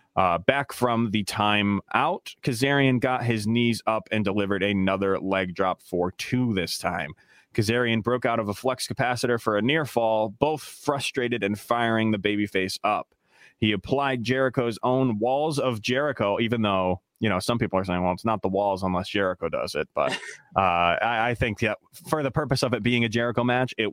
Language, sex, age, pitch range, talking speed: English, male, 20-39, 105-130 Hz, 200 wpm